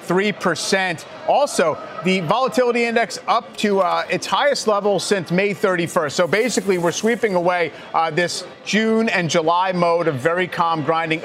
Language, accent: English, American